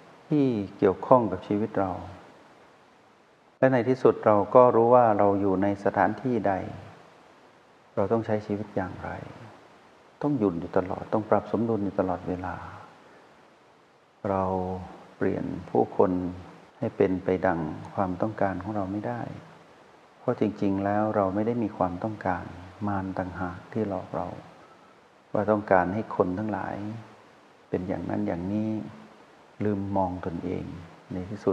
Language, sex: Thai, male